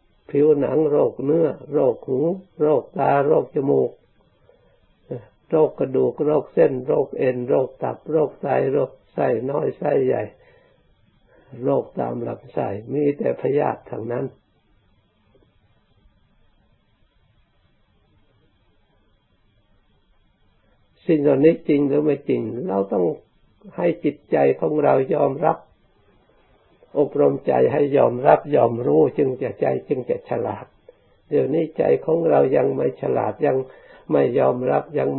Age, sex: 60-79, male